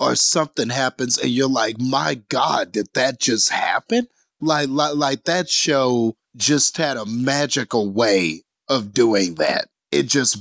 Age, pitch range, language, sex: 30-49, 130-175 Hz, English, male